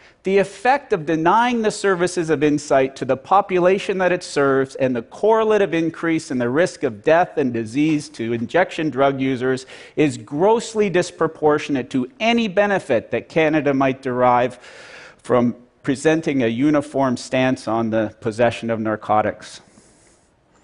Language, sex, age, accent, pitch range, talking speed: Russian, male, 50-69, American, 125-185 Hz, 140 wpm